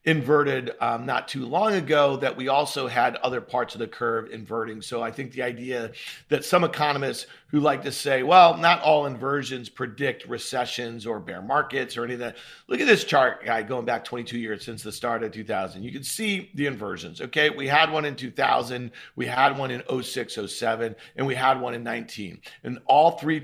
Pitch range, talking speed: 125-160 Hz, 205 wpm